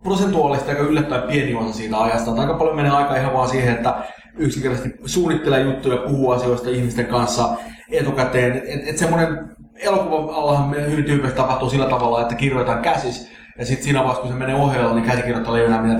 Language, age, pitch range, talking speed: Finnish, 20-39, 120-140 Hz, 175 wpm